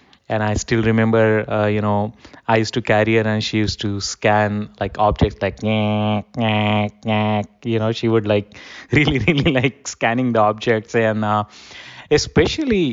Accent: native